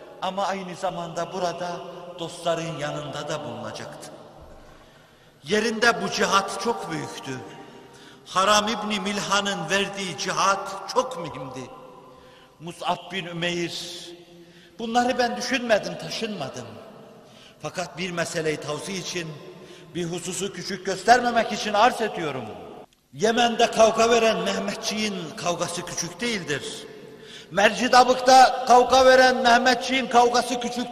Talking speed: 100 wpm